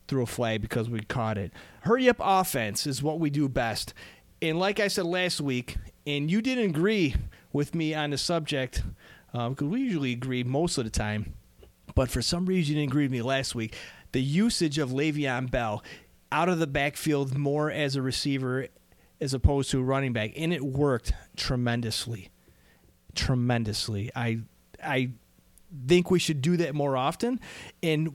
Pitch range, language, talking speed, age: 115-155 Hz, English, 180 wpm, 30-49